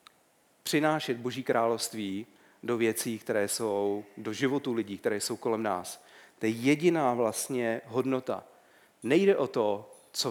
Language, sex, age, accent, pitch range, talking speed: Czech, male, 40-59, native, 115-145 Hz, 135 wpm